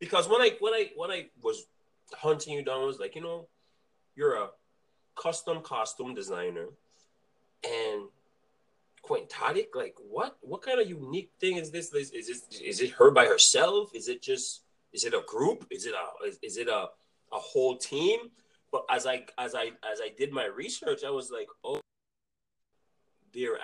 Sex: male